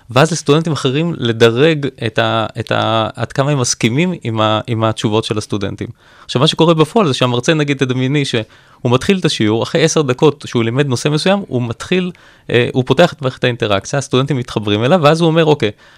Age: 20-39